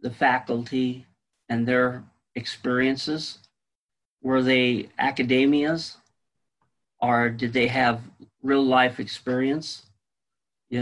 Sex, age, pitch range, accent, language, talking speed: male, 50-69, 120-140 Hz, American, English, 90 wpm